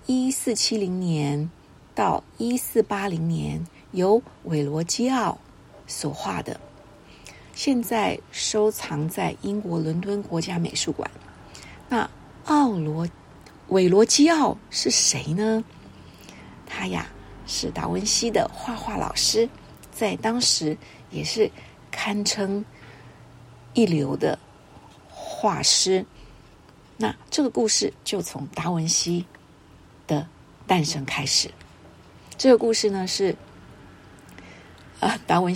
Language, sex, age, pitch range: Chinese, female, 50-69, 150-215 Hz